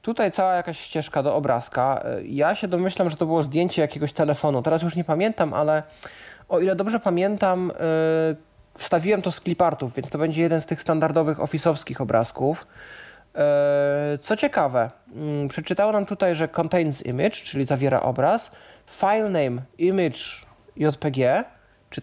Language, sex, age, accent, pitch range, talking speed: Polish, male, 20-39, native, 140-180 Hz, 145 wpm